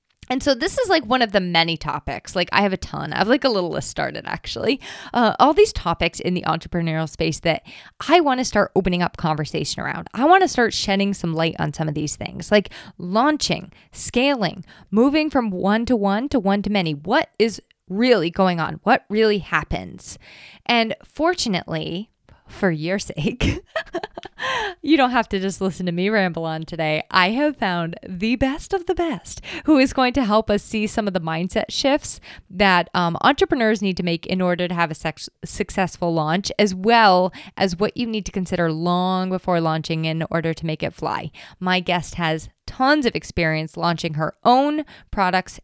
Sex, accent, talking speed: female, American, 195 wpm